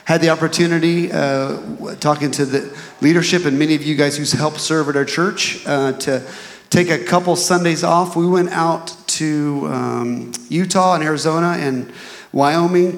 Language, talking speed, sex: English, 165 wpm, male